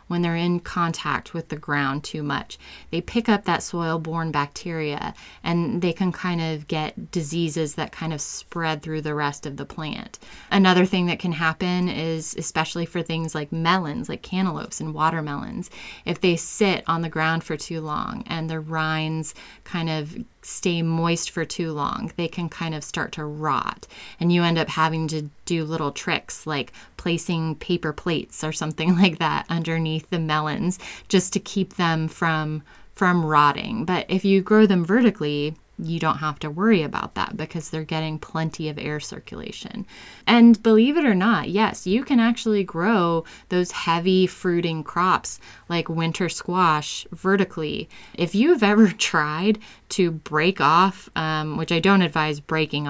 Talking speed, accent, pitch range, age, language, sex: 170 wpm, American, 155-180 Hz, 20-39, English, female